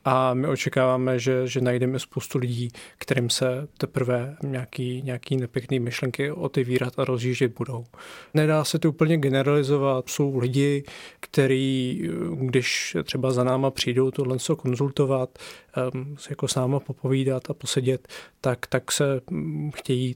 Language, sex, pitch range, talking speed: Czech, male, 130-145 Hz, 140 wpm